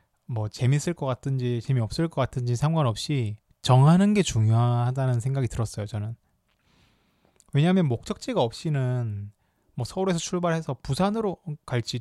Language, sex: Korean, male